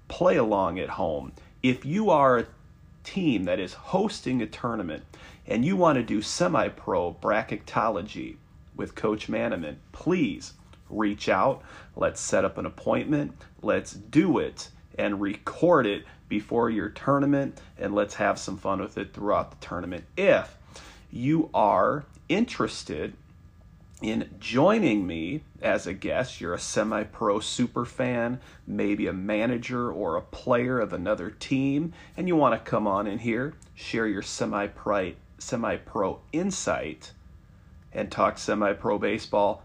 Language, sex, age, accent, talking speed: English, male, 40-59, American, 140 wpm